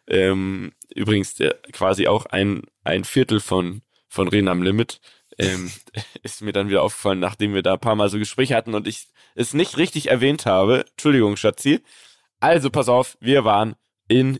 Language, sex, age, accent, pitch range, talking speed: German, male, 20-39, German, 100-130 Hz, 165 wpm